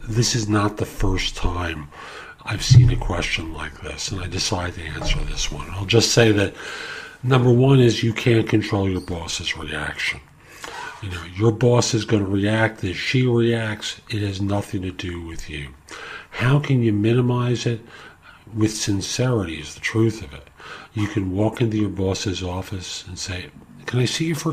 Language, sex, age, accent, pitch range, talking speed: English, male, 50-69, American, 85-110 Hz, 180 wpm